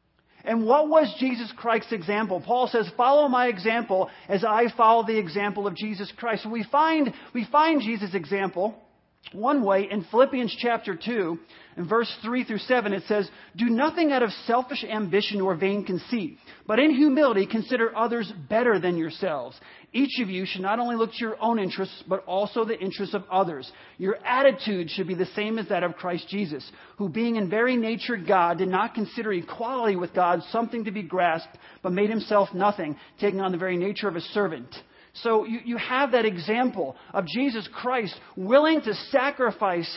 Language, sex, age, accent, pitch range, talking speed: English, male, 40-59, American, 195-235 Hz, 185 wpm